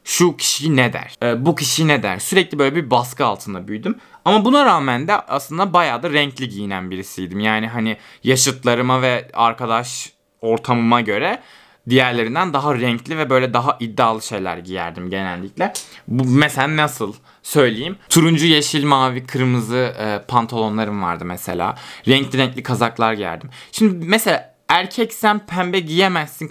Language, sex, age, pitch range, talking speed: Turkish, male, 20-39, 115-170 Hz, 140 wpm